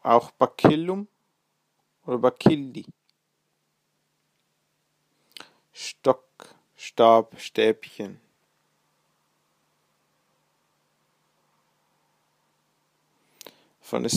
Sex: male